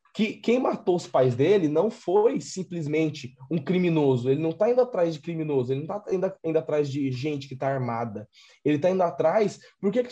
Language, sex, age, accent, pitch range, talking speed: Portuguese, male, 20-39, Brazilian, 140-185 Hz, 215 wpm